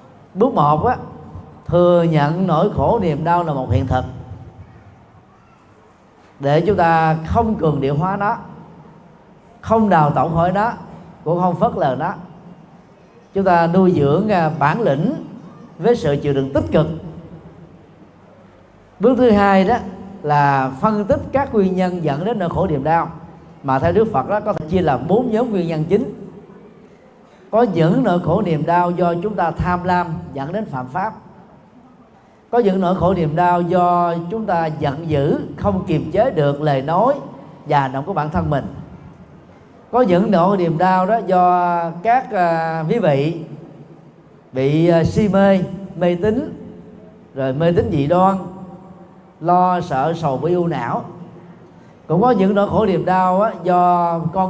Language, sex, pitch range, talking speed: Vietnamese, male, 160-195 Hz, 165 wpm